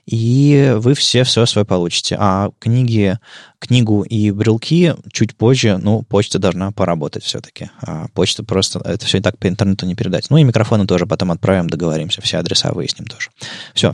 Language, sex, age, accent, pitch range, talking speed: Russian, male, 20-39, native, 95-125 Hz, 175 wpm